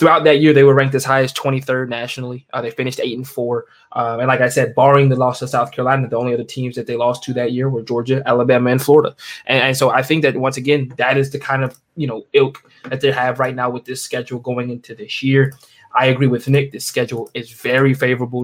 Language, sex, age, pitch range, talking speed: English, male, 20-39, 125-140 Hz, 265 wpm